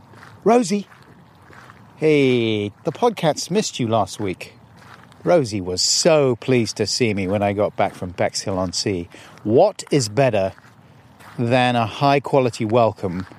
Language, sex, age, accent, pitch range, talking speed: English, male, 40-59, British, 115-150 Hz, 125 wpm